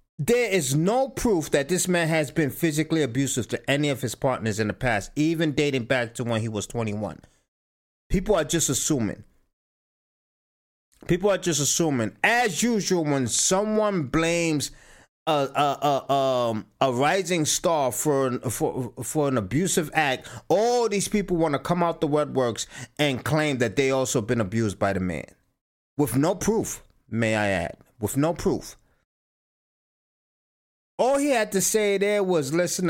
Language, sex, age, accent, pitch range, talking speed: English, male, 30-49, American, 130-180 Hz, 160 wpm